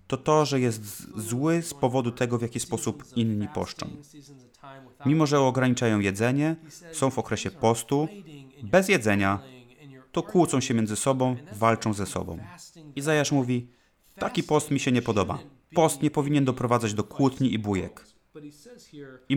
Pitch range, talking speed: 115-145 Hz, 150 wpm